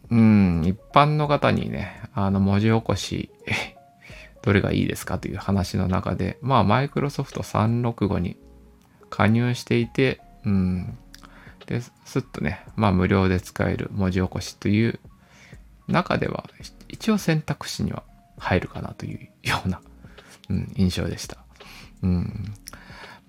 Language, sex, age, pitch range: Japanese, male, 20-39, 95-140 Hz